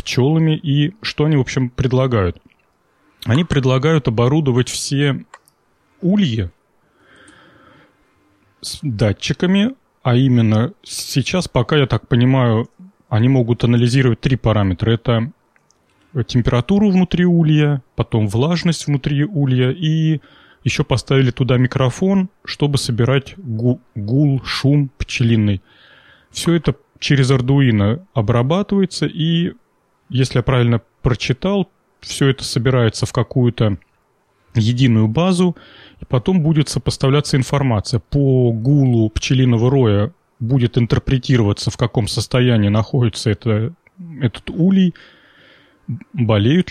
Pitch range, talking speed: 115-145 Hz, 105 wpm